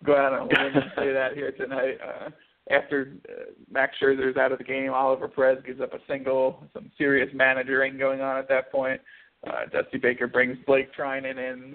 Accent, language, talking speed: American, English, 195 wpm